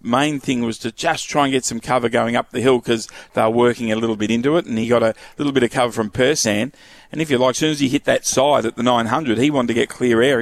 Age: 40-59